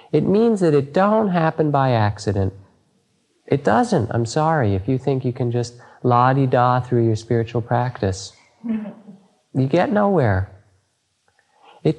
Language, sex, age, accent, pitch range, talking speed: English, male, 40-59, American, 105-150 Hz, 135 wpm